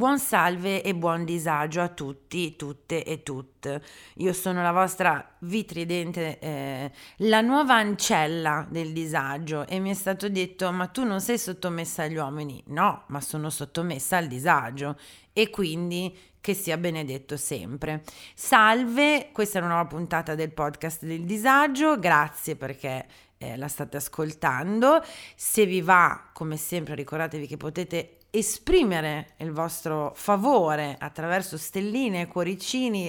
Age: 30-49